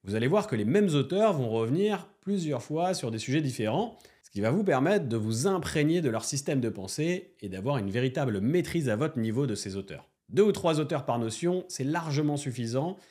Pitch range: 115-165 Hz